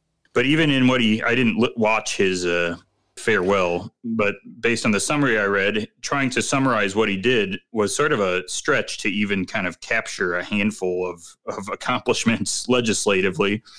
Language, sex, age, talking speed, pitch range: English, male, 30-49, 180 wpm, 90-120 Hz